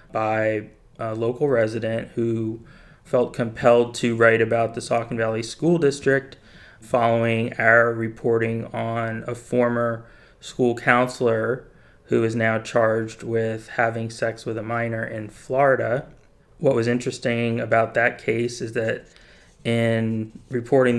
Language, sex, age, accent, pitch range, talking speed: English, male, 30-49, American, 110-120 Hz, 130 wpm